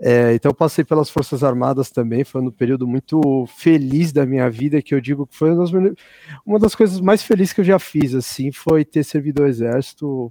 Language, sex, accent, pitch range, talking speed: Portuguese, male, Brazilian, 125-155 Hz, 220 wpm